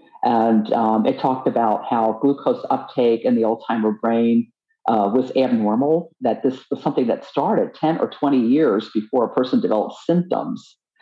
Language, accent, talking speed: English, American, 165 wpm